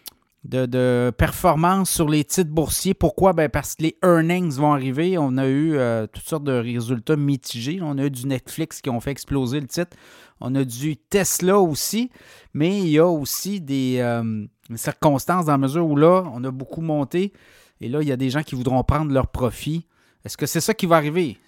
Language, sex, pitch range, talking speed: French, male, 135-170 Hz, 220 wpm